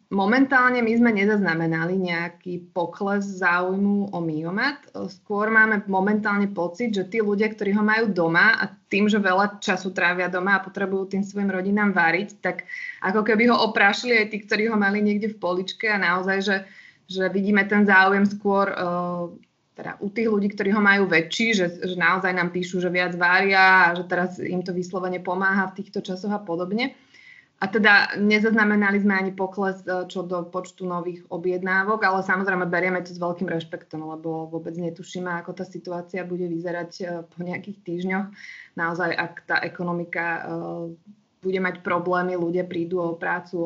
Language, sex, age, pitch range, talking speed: Slovak, female, 20-39, 175-200 Hz, 170 wpm